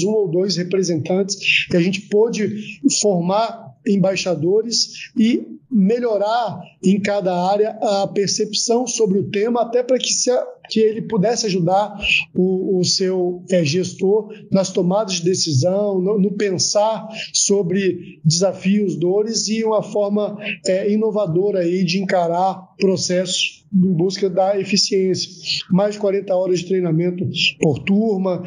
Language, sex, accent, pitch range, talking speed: Portuguese, male, Brazilian, 180-205 Hz, 125 wpm